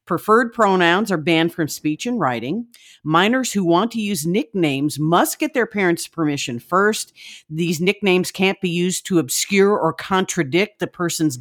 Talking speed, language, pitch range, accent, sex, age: 165 wpm, English, 155-195 Hz, American, female, 50-69